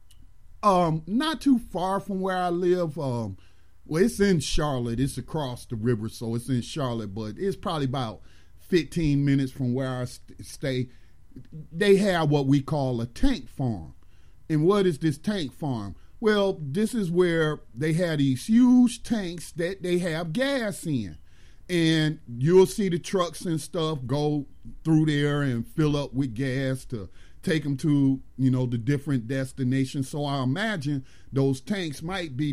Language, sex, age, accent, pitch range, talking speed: English, male, 40-59, American, 125-180 Hz, 165 wpm